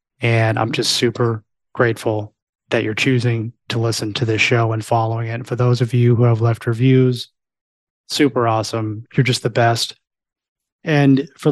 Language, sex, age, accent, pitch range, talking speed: English, male, 20-39, American, 120-135 Hz, 170 wpm